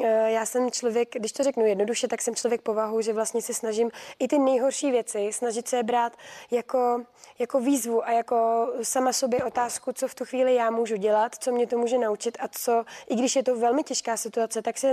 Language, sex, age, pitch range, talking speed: Czech, female, 20-39, 220-255 Hz, 215 wpm